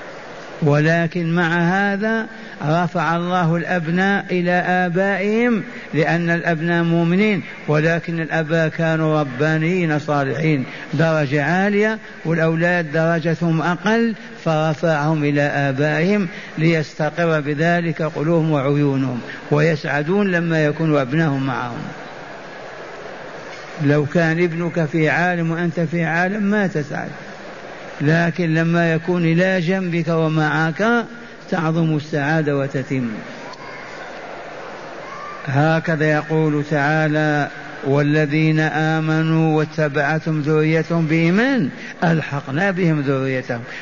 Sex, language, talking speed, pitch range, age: male, Arabic, 85 wpm, 150-180 Hz, 60-79